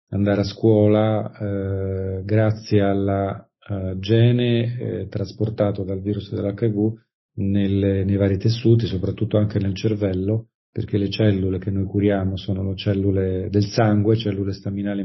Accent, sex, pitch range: native, male, 95-110 Hz